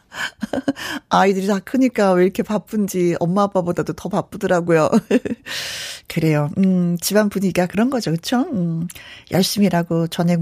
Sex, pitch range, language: female, 175-255 Hz, Korean